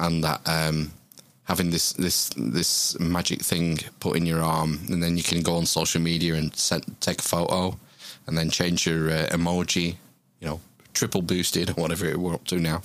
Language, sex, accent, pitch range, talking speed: English, male, British, 80-95 Hz, 200 wpm